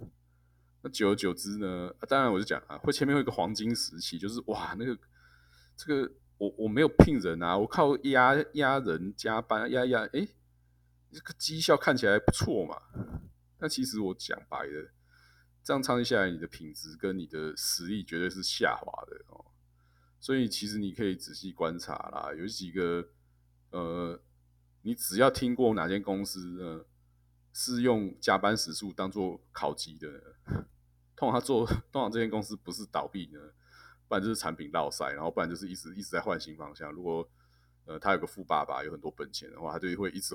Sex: male